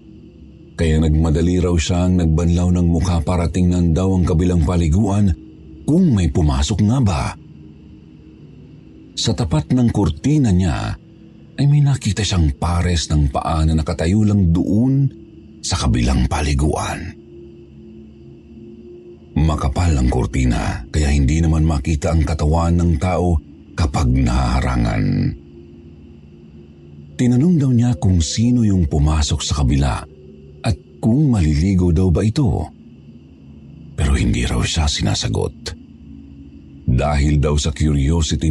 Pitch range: 75-110 Hz